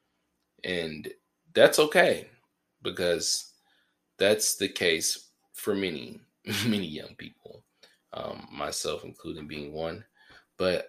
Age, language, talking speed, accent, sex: 20-39, English, 100 wpm, American, male